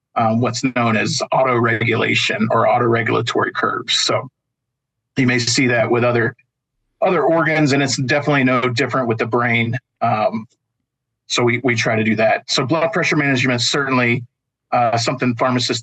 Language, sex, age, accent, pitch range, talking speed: English, male, 40-59, American, 120-135 Hz, 160 wpm